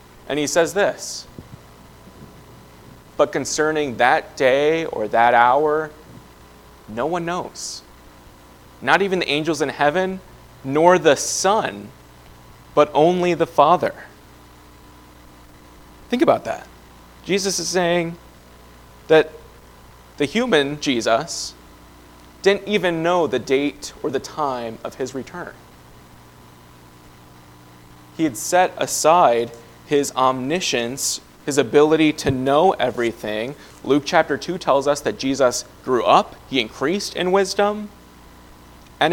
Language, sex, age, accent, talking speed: English, male, 30-49, American, 110 wpm